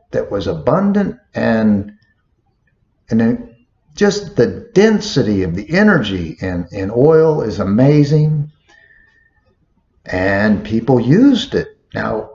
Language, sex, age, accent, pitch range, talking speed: English, male, 50-69, American, 95-155 Hz, 100 wpm